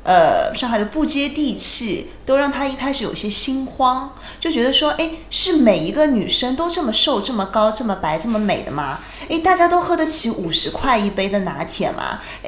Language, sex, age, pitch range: Chinese, female, 20-39, 190-265 Hz